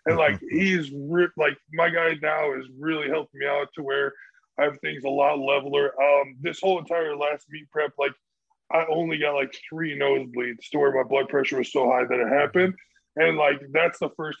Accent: American